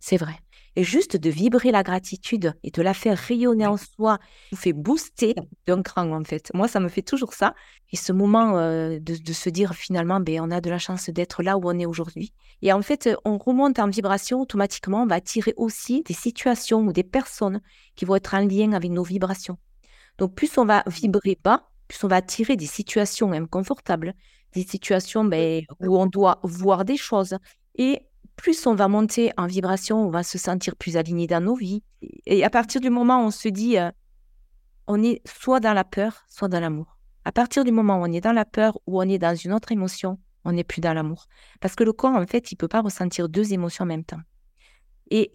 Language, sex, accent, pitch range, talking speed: French, female, French, 175-225 Hz, 225 wpm